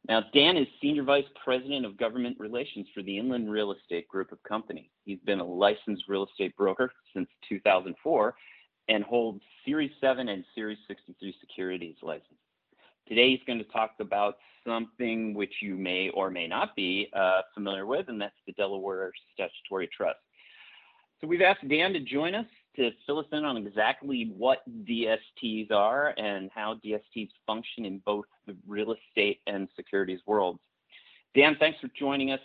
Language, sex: English, male